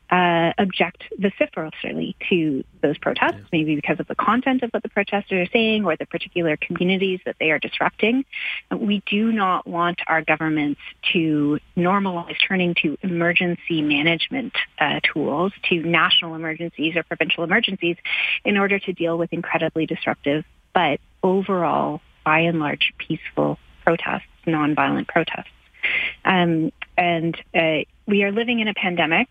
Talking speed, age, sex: 145 wpm, 30-49, female